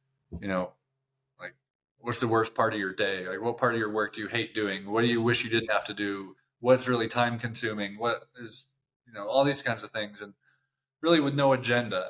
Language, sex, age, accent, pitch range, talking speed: English, male, 20-39, American, 110-135 Hz, 235 wpm